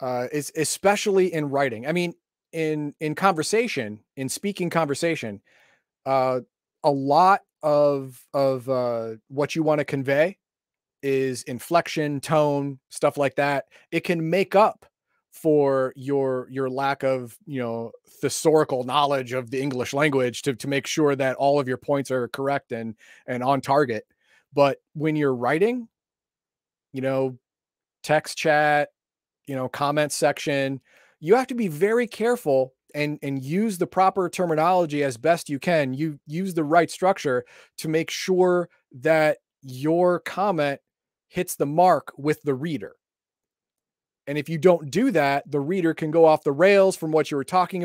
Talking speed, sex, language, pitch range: 155 wpm, male, English, 135-170 Hz